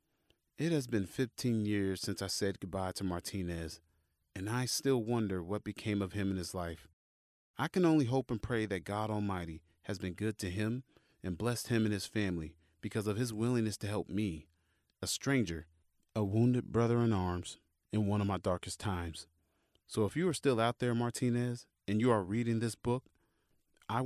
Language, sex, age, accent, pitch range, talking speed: English, male, 30-49, American, 85-110 Hz, 190 wpm